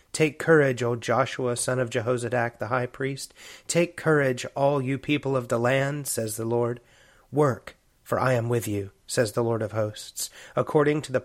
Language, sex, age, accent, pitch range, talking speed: English, male, 30-49, American, 110-135 Hz, 185 wpm